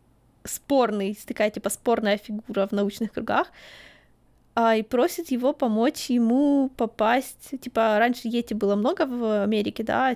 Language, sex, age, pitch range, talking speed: Ukrainian, female, 20-39, 220-260 Hz, 140 wpm